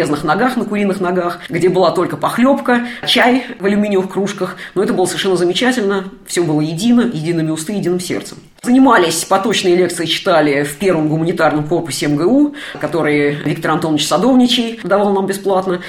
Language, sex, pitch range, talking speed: Russian, female, 155-205 Hz, 150 wpm